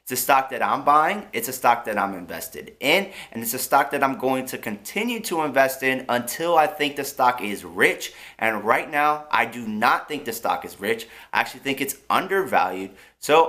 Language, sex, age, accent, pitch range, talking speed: English, male, 30-49, American, 120-165 Hz, 215 wpm